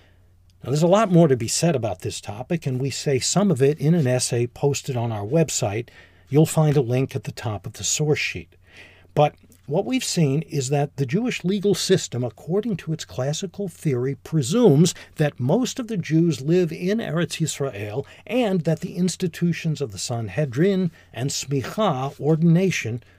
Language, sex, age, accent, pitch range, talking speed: English, male, 50-69, American, 110-165 Hz, 180 wpm